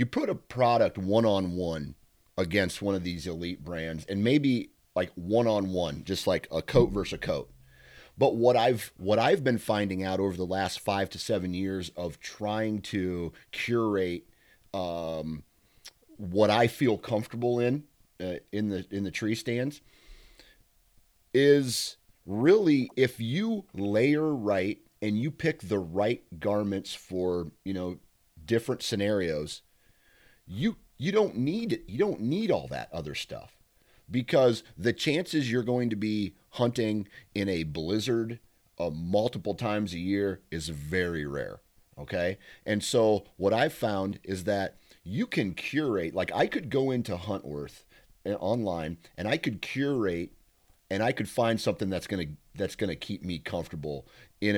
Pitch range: 90-120 Hz